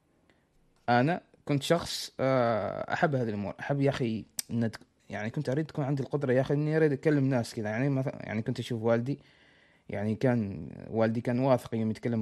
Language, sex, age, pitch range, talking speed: Arabic, male, 20-39, 110-140 Hz, 170 wpm